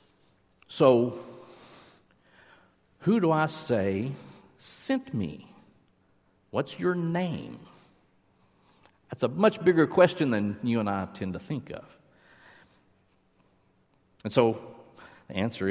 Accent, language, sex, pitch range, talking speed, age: American, English, male, 120-180 Hz, 105 wpm, 50-69